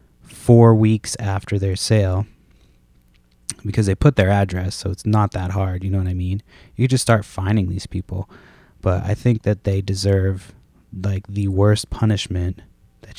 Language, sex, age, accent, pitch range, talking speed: English, male, 20-39, American, 95-110 Hz, 170 wpm